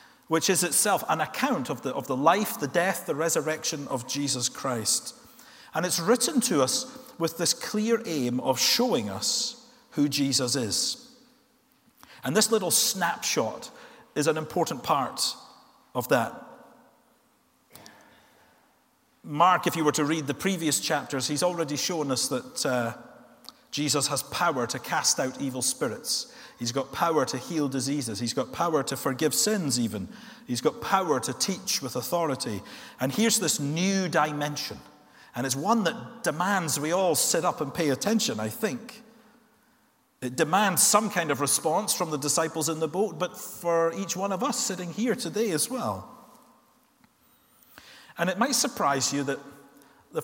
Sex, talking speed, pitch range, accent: male, 160 wpm, 140-225 Hz, British